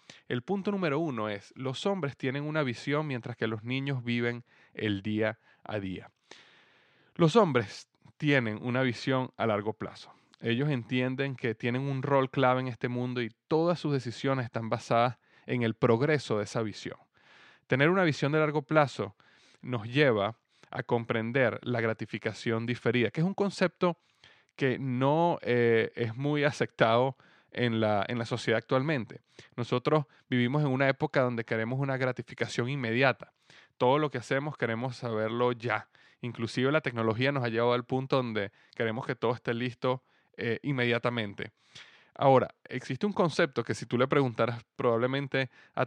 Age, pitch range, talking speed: 30-49, 115-140 Hz, 160 wpm